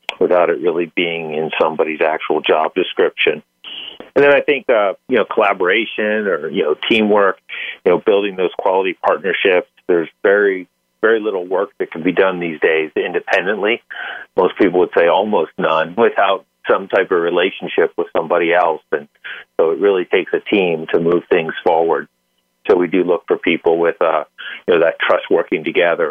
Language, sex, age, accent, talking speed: English, male, 50-69, American, 180 wpm